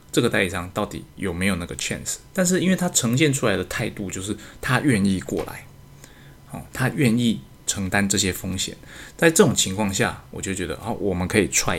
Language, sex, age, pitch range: Chinese, male, 20-39, 95-120 Hz